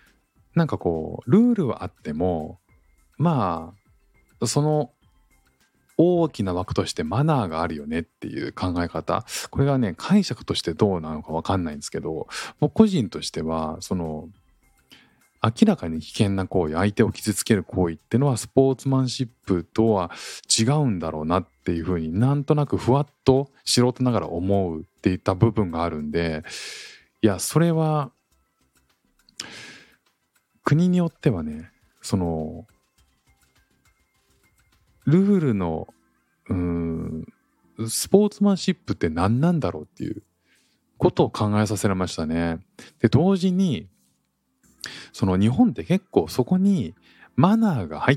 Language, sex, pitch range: Japanese, male, 85-135 Hz